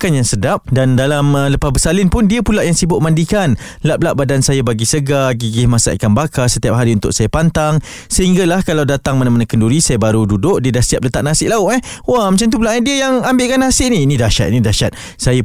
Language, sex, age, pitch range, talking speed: Malay, male, 20-39, 110-145 Hz, 220 wpm